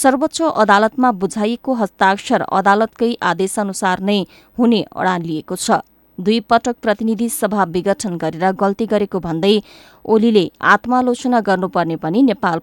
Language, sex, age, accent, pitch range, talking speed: English, female, 20-39, Indian, 180-230 Hz, 130 wpm